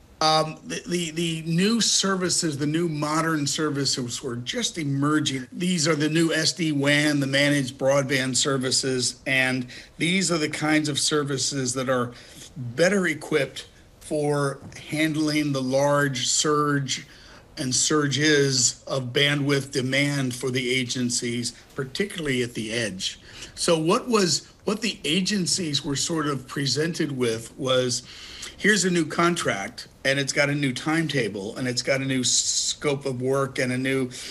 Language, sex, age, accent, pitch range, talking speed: English, male, 50-69, American, 130-155 Hz, 145 wpm